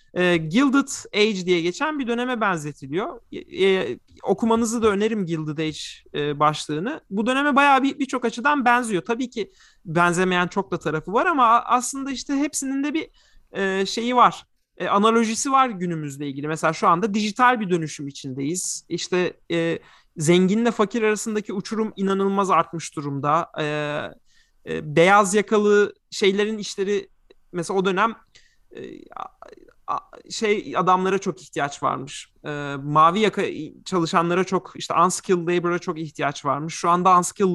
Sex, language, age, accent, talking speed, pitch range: male, Turkish, 40-59, native, 135 wpm, 165-245 Hz